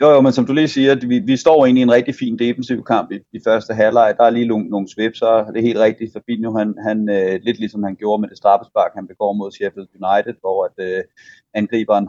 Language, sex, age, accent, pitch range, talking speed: Danish, male, 30-49, native, 110-130 Hz, 255 wpm